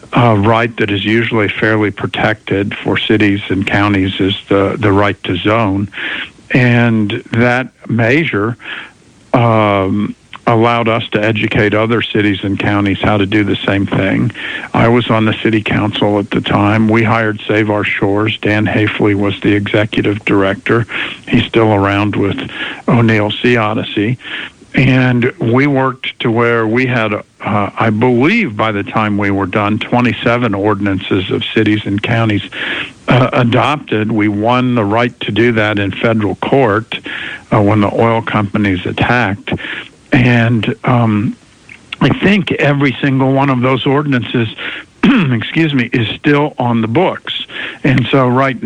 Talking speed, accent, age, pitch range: 150 wpm, American, 50-69, 105-120 Hz